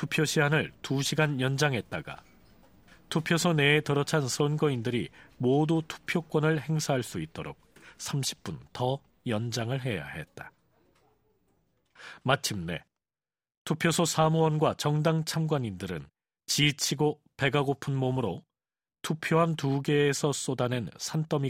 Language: Korean